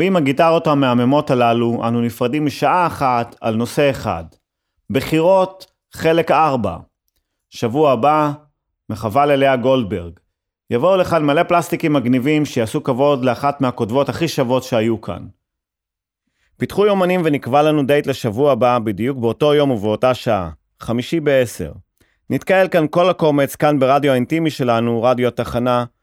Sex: male